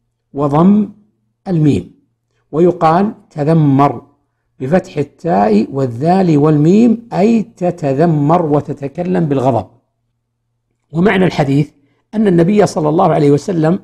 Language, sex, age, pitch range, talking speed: Arabic, male, 60-79, 135-185 Hz, 85 wpm